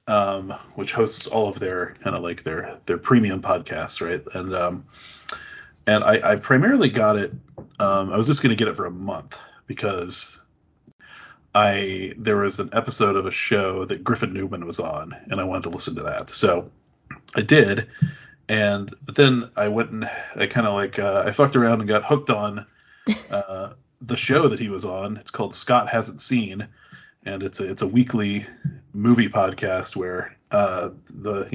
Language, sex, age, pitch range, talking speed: English, male, 30-49, 95-120 Hz, 185 wpm